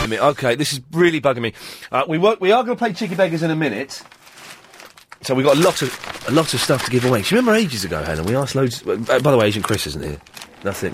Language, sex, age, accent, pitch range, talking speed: English, male, 30-49, British, 125-170 Hz, 275 wpm